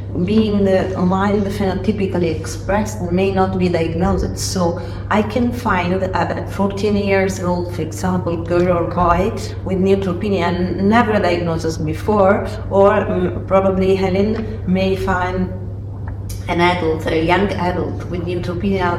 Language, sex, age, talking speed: English, female, 40-59, 125 wpm